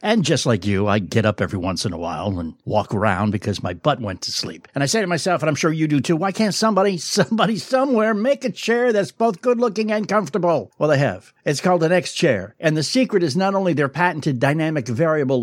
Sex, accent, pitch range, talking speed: male, American, 130-195 Hz, 245 wpm